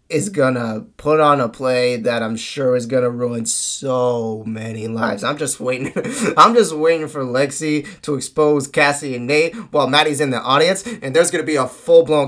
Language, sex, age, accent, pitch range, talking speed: English, male, 20-39, American, 110-140 Hz, 205 wpm